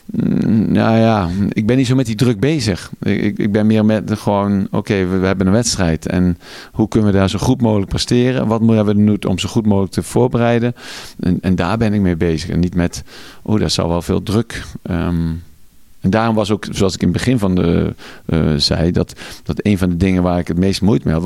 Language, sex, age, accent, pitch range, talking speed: Dutch, male, 50-69, Dutch, 90-115 Hz, 230 wpm